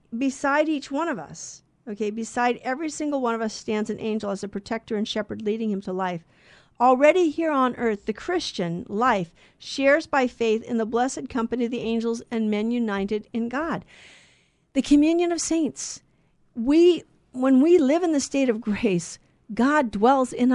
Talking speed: 180 wpm